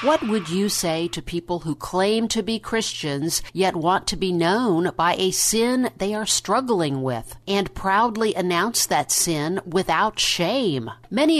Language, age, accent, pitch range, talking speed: English, 50-69, American, 160-205 Hz, 165 wpm